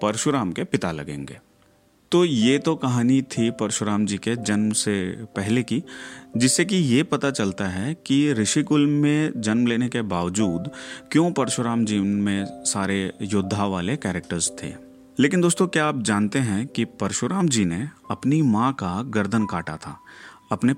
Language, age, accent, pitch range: Hindi, 30-49, native, 100-145 Hz